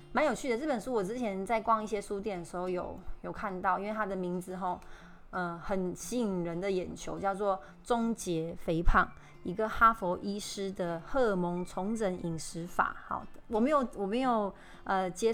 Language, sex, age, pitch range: Chinese, female, 20-39, 180-215 Hz